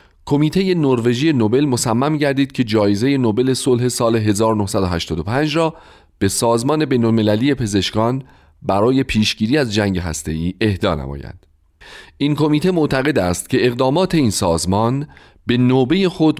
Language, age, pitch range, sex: Persian, 40-59, 95-135 Hz, male